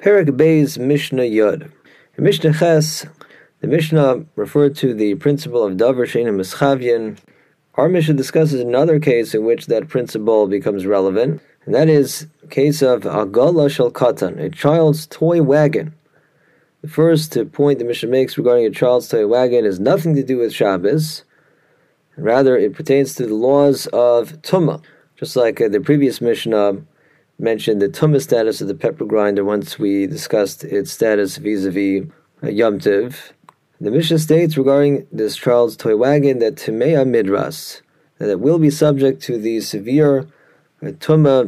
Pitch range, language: 115-150 Hz, English